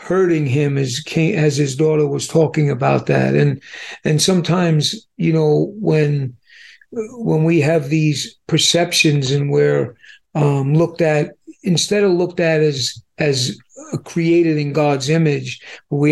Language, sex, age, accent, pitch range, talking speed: English, male, 50-69, American, 145-175 Hz, 140 wpm